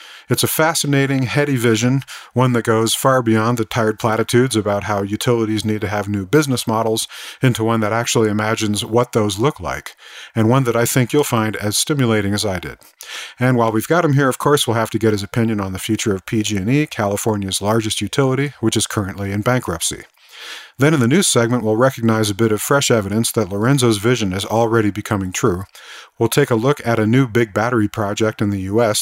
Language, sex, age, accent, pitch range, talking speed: English, male, 40-59, American, 105-130 Hz, 210 wpm